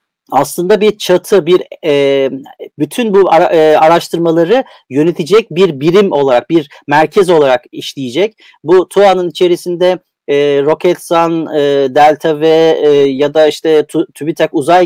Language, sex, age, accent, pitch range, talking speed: Turkish, male, 40-59, native, 145-200 Hz, 130 wpm